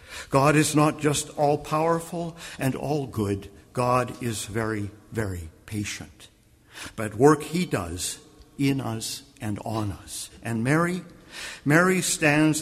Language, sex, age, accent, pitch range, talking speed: English, male, 50-69, American, 110-145 Hz, 120 wpm